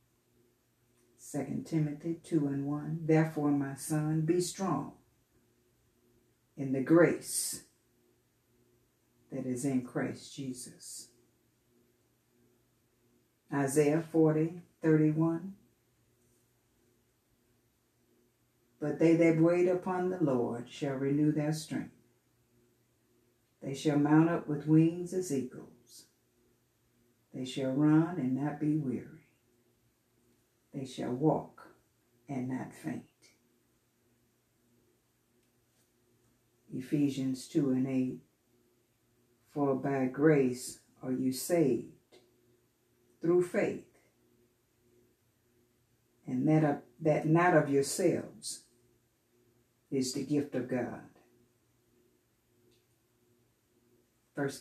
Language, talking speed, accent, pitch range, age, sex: English, 85 wpm, American, 120-155 Hz, 60-79, female